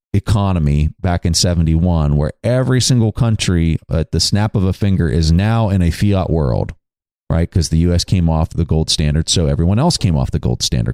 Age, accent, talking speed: 30-49, American, 205 wpm